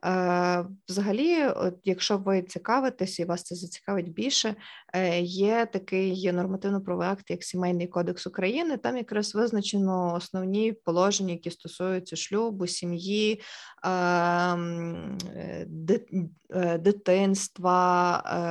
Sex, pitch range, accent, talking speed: female, 175-200 Hz, native, 90 wpm